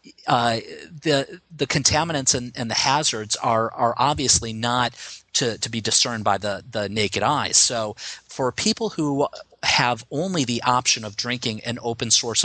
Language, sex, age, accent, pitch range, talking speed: English, male, 40-59, American, 105-125 Hz, 165 wpm